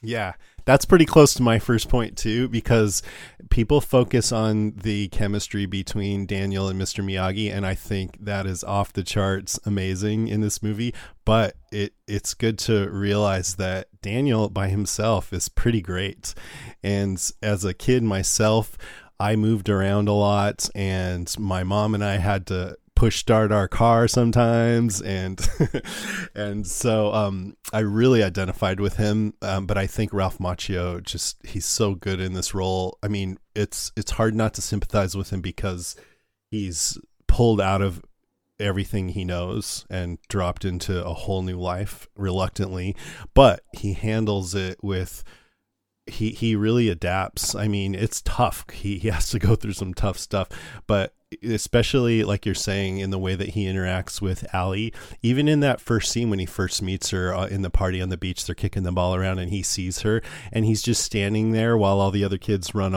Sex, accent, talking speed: male, American, 175 wpm